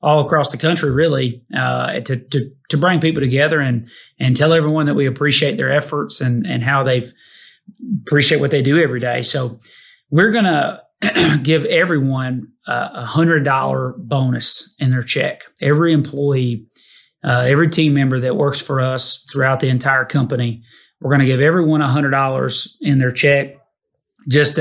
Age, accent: 30-49, American